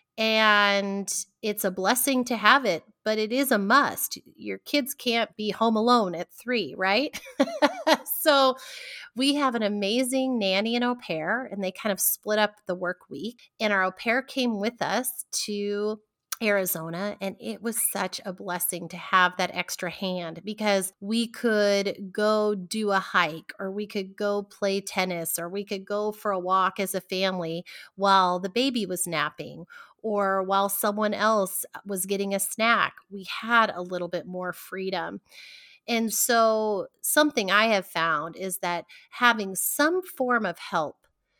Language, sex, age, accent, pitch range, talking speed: English, female, 30-49, American, 185-230 Hz, 165 wpm